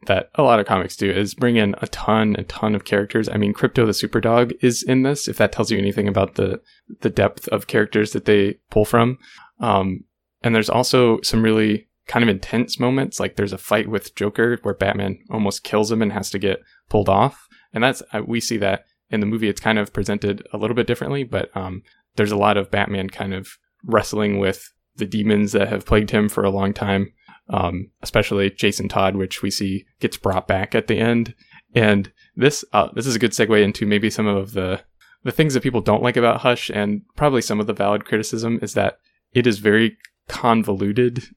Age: 20-39